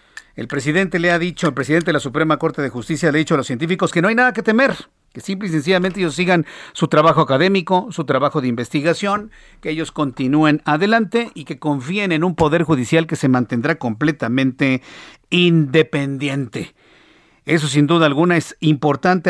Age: 50-69